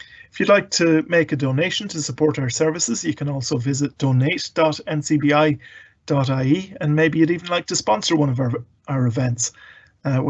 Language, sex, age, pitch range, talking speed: English, male, 40-59, 135-160 Hz, 170 wpm